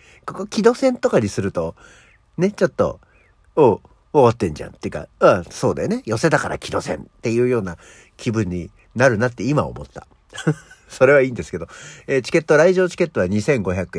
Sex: male